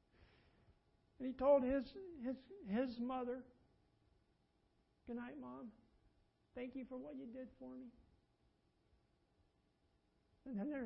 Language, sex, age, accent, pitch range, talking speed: English, male, 60-79, American, 210-280 Hz, 115 wpm